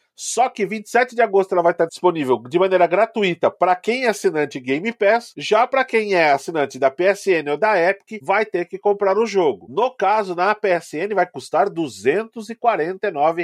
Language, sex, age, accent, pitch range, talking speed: Portuguese, male, 40-59, Brazilian, 170-225 Hz, 185 wpm